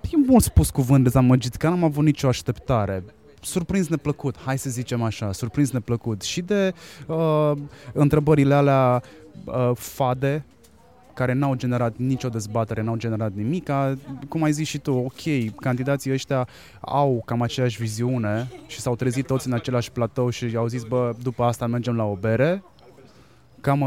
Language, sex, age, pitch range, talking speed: Romanian, male, 20-39, 120-145 Hz, 165 wpm